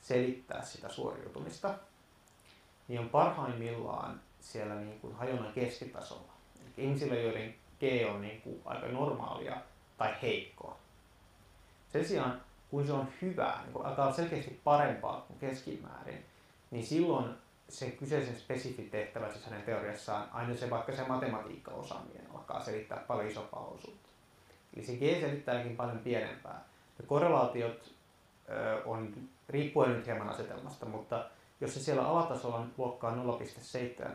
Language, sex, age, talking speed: Finnish, male, 30-49, 130 wpm